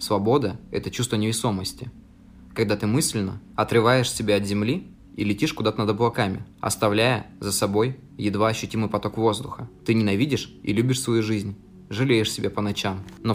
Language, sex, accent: Russian, male, native